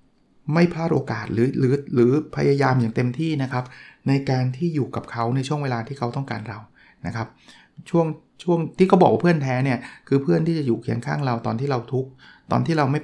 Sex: male